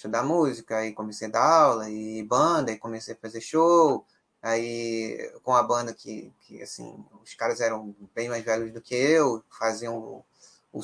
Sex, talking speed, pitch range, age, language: male, 185 wpm, 115-170 Hz, 20-39, Portuguese